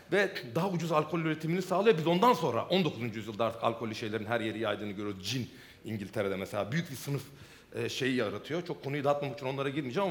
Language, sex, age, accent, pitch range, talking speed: Turkish, male, 40-59, native, 135-180 Hz, 190 wpm